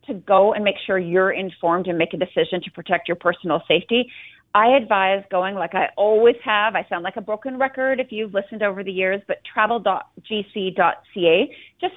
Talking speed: 190 wpm